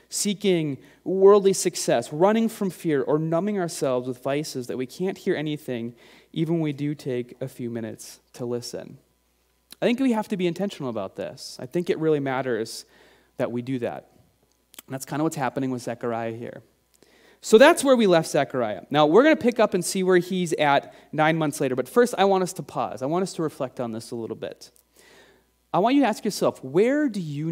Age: 30-49